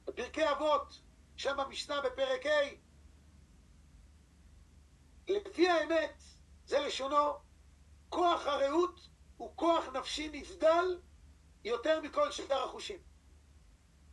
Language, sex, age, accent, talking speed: English, male, 50-69, Israeli, 80 wpm